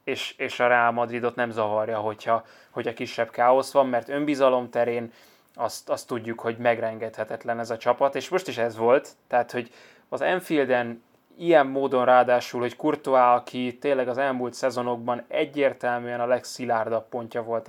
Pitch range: 115-130 Hz